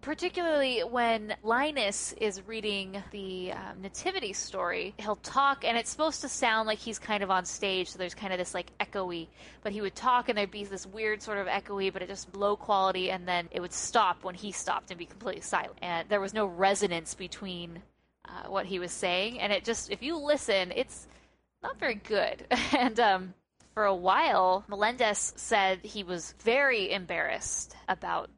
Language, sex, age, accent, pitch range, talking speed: English, female, 20-39, American, 185-230 Hz, 190 wpm